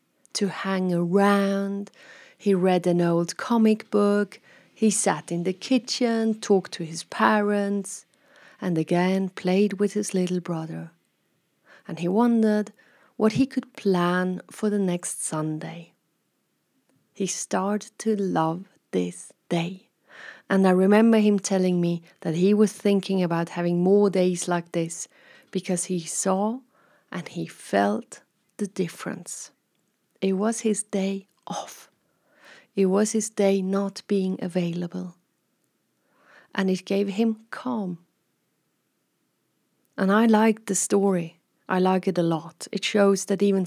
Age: 30-49